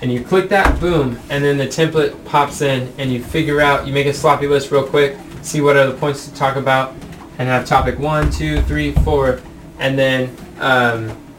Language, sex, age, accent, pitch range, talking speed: English, male, 20-39, American, 125-150 Hz, 210 wpm